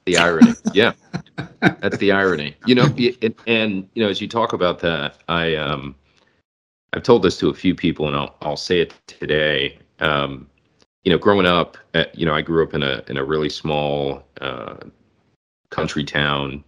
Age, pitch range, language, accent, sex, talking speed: 30-49, 75-85 Hz, English, American, male, 185 wpm